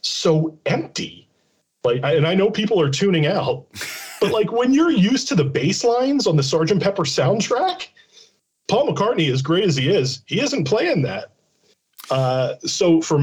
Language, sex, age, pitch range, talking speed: English, male, 40-59, 115-160 Hz, 170 wpm